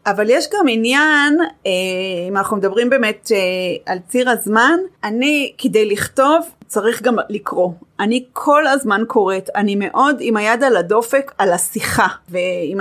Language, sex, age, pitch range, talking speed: Hebrew, female, 30-49, 200-280 Hz, 140 wpm